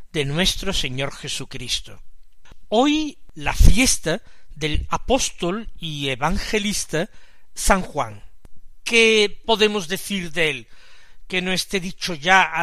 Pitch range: 160-205 Hz